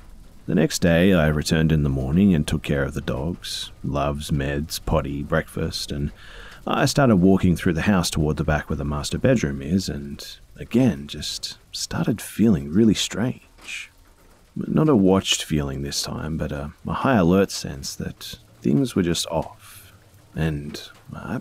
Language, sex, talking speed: English, male, 165 wpm